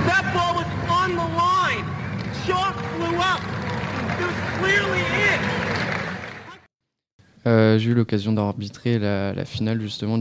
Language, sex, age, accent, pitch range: French, male, 20-39, French, 100-110 Hz